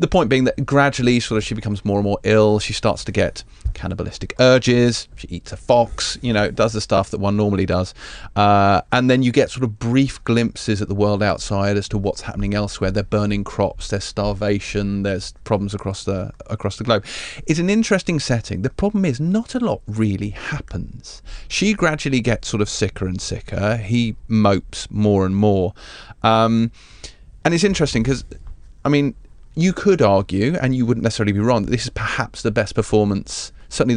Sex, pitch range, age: male, 100-125 Hz, 30-49